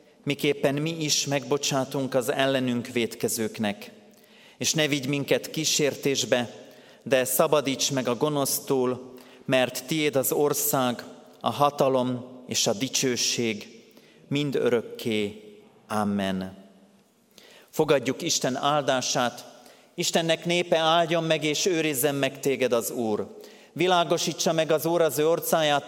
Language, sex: Hungarian, male